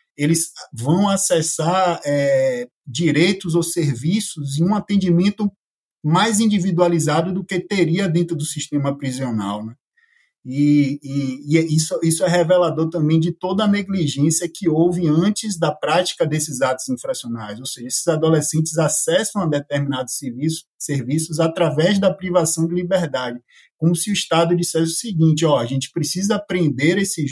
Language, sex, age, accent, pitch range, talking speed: Portuguese, male, 20-39, Brazilian, 145-180 Hz, 150 wpm